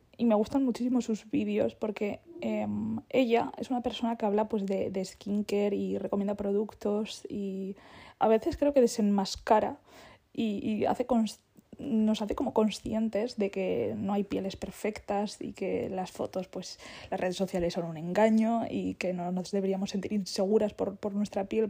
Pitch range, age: 200-230 Hz, 20-39